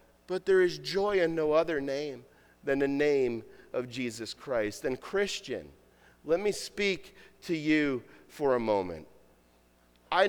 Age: 40-59